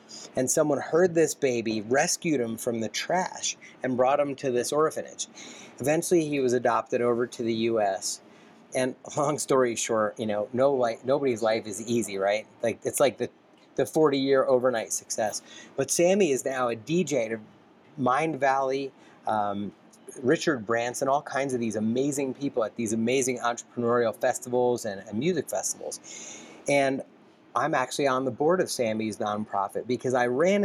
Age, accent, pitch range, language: 30-49, American, 120-145 Hz, English